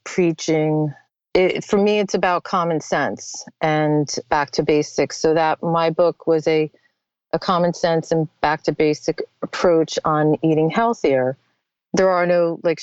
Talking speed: 155 wpm